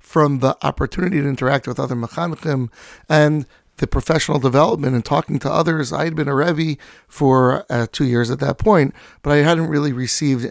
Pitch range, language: 125-150 Hz, English